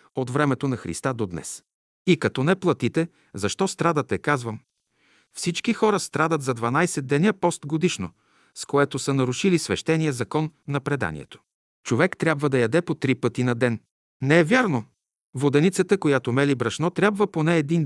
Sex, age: male, 50-69